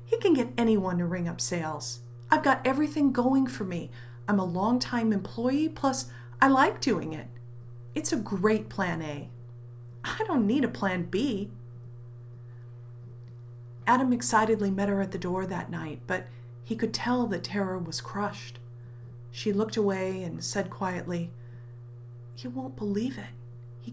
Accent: American